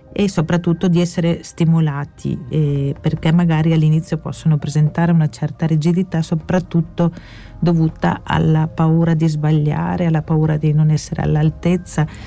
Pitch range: 155-180 Hz